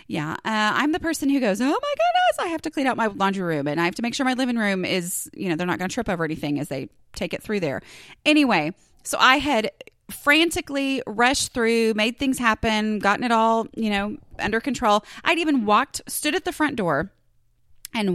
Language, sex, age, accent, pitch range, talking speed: English, female, 30-49, American, 190-280 Hz, 230 wpm